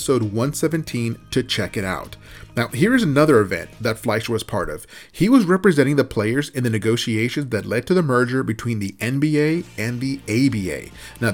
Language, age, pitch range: English, 30-49, 115-145 Hz